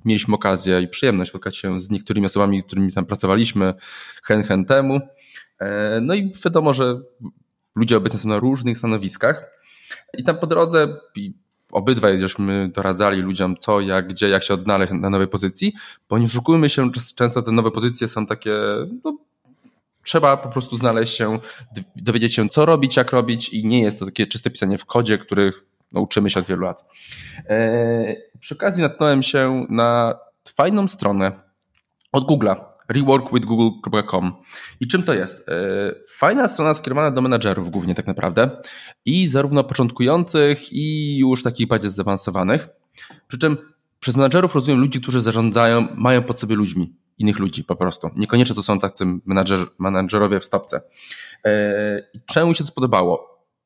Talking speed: 150 wpm